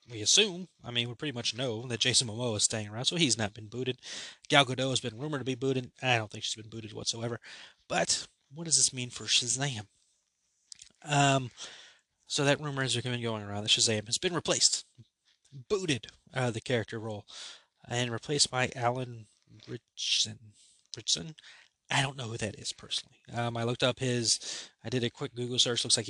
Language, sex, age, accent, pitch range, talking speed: English, male, 20-39, American, 115-135 Hz, 195 wpm